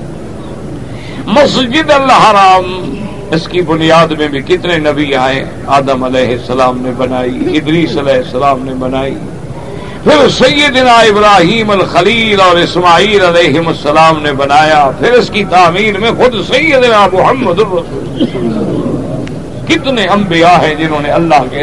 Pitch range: 140-195 Hz